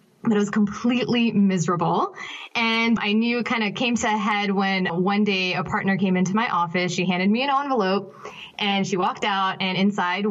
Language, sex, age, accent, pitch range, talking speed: English, female, 20-39, American, 180-220 Hz, 205 wpm